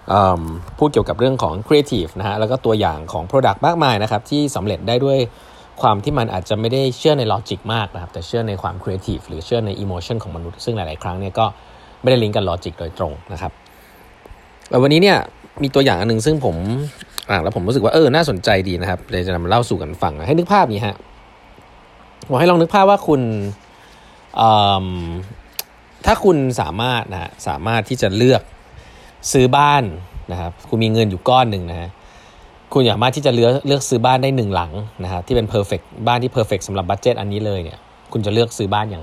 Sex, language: male, Thai